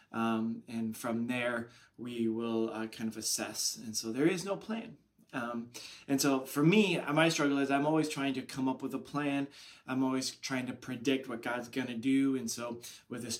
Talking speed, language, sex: 210 wpm, English, male